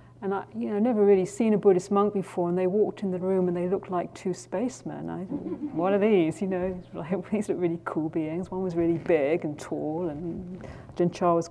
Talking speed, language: 225 wpm, English